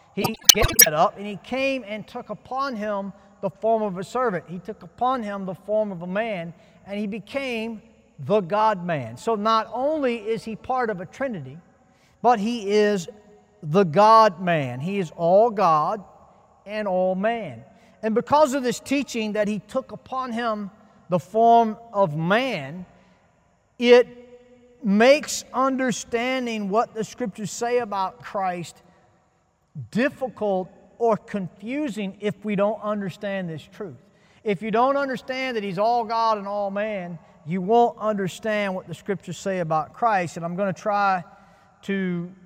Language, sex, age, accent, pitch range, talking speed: English, male, 50-69, American, 185-230 Hz, 155 wpm